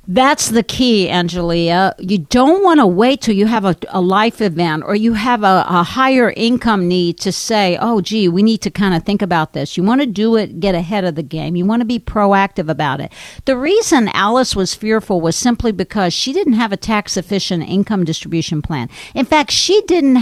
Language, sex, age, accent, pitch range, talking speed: English, female, 50-69, American, 190-250 Hz, 215 wpm